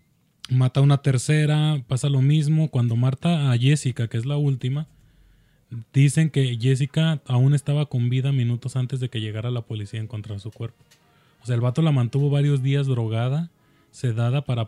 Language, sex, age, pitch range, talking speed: Spanish, male, 20-39, 120-145 Hz, 185 wpm